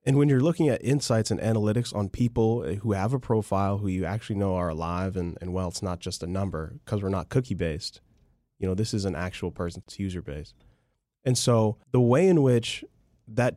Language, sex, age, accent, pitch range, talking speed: English, male, 20-39, American, 100-130 Hz, 210 wpm